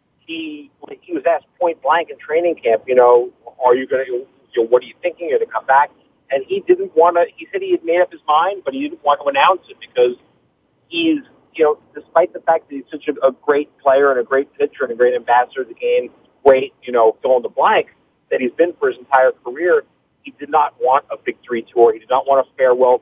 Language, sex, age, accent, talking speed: English, male, 40-59, American, 250 wpm